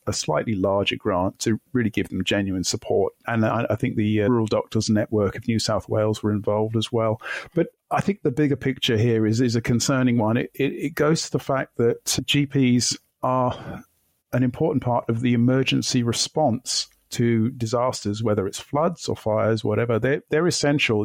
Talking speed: 190 wpm